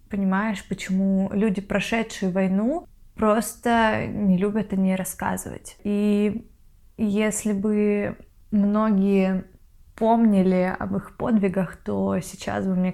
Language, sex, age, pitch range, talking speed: Russian, female, 20-39, 195-225 Hz, 105 wpm